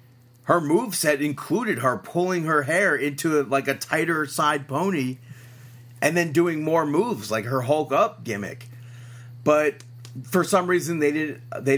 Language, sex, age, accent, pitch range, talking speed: English, male, 30-49, American, 120-150 Hz, 150 wpm